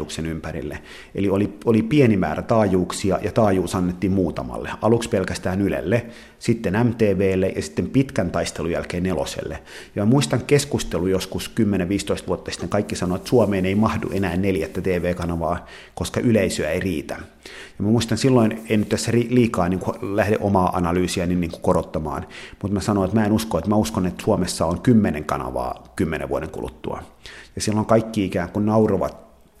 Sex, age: male, 30-49